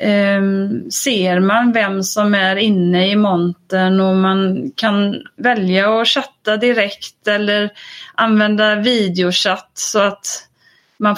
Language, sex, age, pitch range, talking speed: English, female, 30-49, 185-215 Hz, 115 wpm